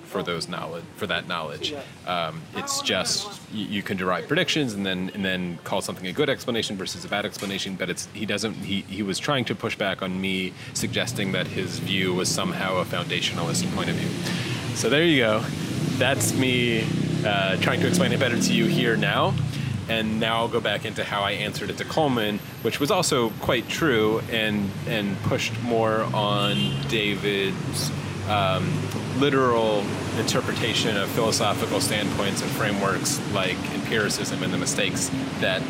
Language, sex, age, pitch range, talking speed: English, male, 30-49, 100-125 Hz, 170 wpm